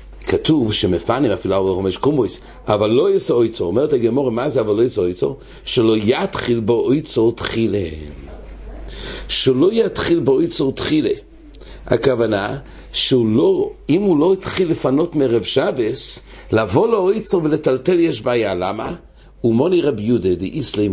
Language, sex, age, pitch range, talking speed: English, male, 60-79, 105-150 Hz, 135 wpm